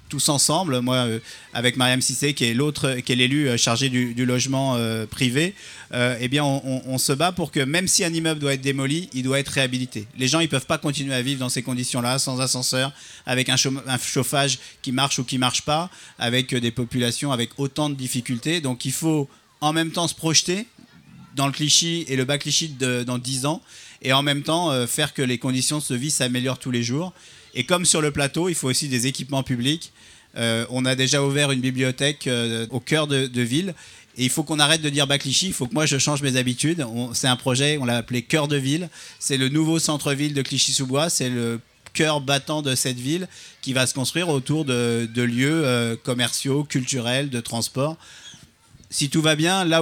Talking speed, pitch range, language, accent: 225 wpm, 125-150 Hz, French, French